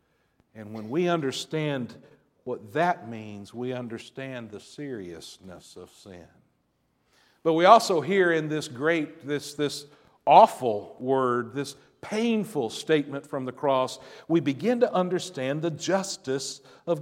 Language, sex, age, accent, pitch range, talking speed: English, male, 50-69, American, 130-165 Hz, 130 wpm